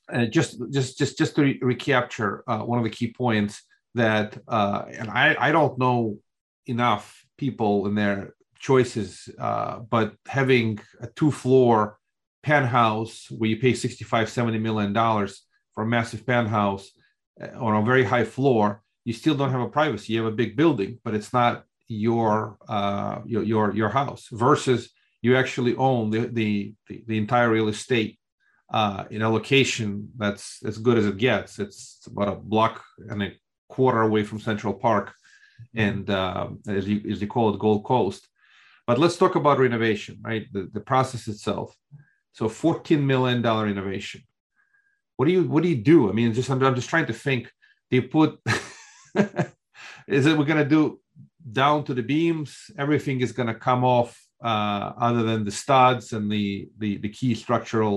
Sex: male